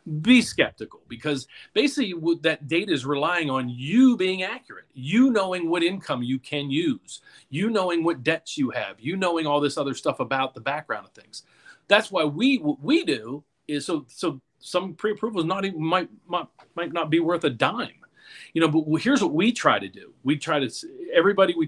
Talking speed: 200 wpm